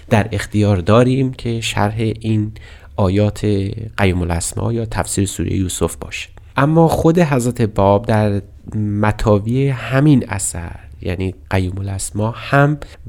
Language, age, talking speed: Persian, 30-49, 110 wpm